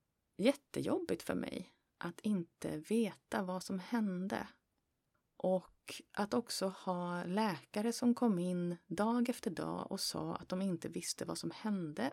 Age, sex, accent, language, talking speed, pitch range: 30-49, female, native, Swedish, 145 wpm, 185-240 Hz